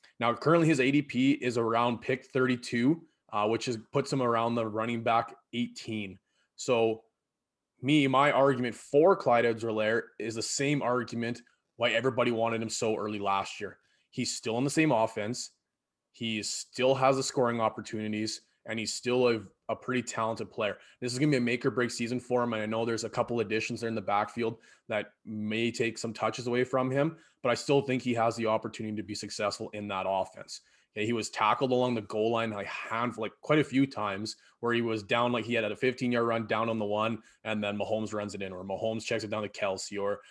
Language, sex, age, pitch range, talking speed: English, male, 20-39, 110-125 Hz, 215 wpm